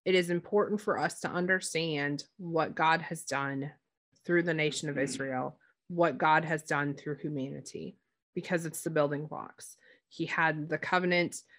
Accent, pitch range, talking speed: American, 155-190 Hz, 160 wpm